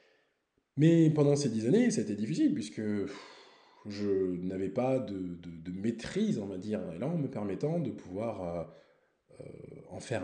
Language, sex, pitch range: French, male, 105-175 Hz